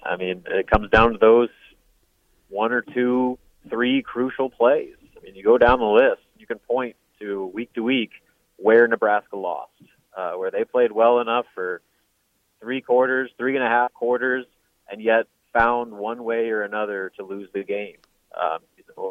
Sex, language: male, English